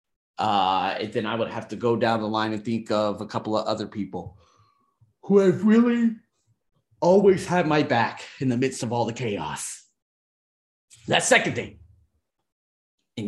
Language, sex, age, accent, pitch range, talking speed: English, male, 30-49, American, 110-145 Hz, 165 wpm